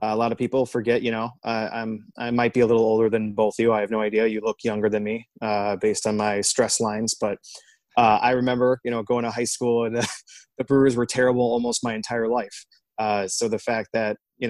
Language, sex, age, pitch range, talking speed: English, male, 20-39, 110-120 Hz, 250 wpm